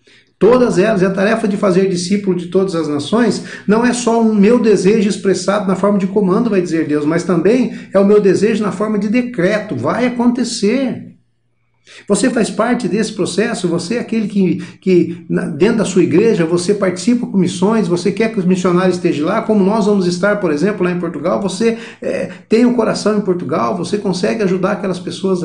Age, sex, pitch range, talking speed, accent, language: 60-79, male, 170-205 Hz, 195 wpm, Brazilian, Portuguese